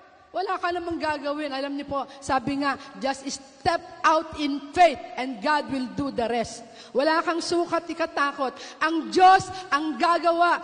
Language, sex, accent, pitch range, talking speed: Filipino, female, native, 265-325 Hz, 160 wpm